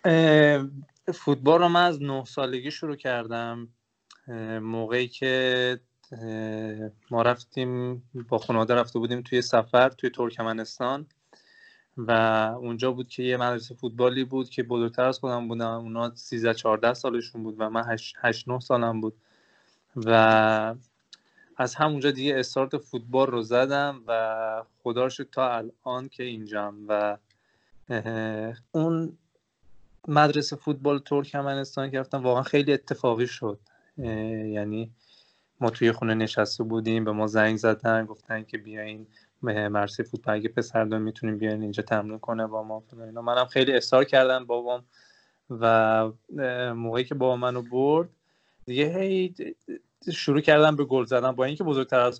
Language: Persian